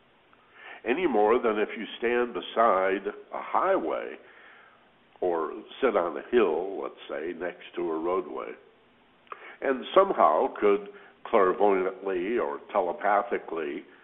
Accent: American